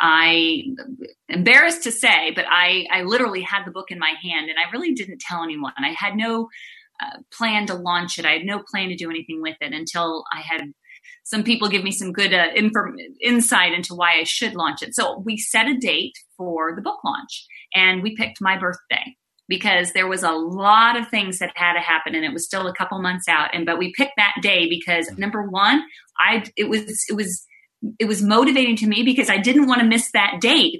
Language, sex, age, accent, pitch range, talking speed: English, female, 30-49, American, 185-240 Hz, 225 wpm